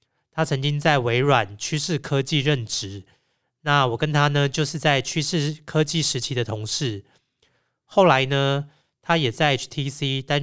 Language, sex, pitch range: Chinese, male, 120-155 Hz